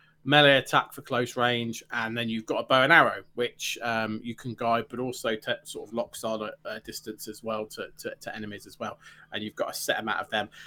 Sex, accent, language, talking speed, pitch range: male, British, English, 245 wpm, 120-155 Hz